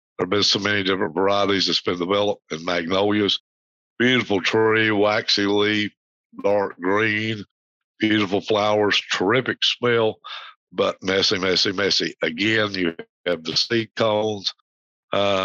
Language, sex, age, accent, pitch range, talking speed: English, male, 60-79, American, 90-105 Hz, 130 wpm